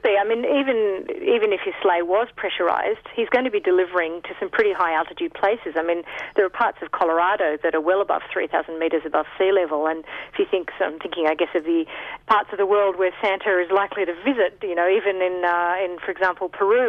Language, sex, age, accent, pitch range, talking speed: English, female, 40-59, Australian, 170-220 Hz, 235 wpm